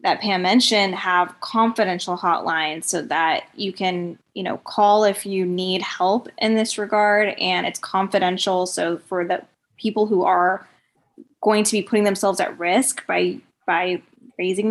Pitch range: 180-205 Hz